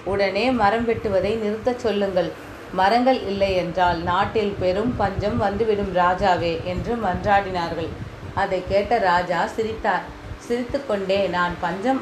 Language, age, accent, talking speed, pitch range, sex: Tamil, 30-49, native, 115 wpm, 180-220 Hz, female